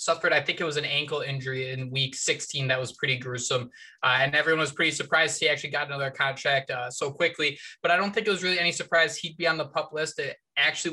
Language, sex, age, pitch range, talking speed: English, male, 20-39, 145-190 Hz, 255 wpm